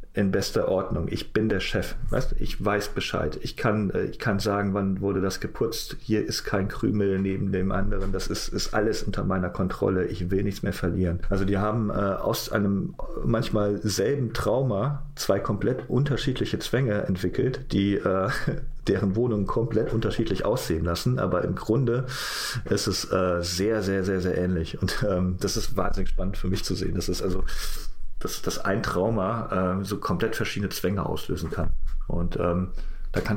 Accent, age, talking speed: German, 40-59, 180 wpm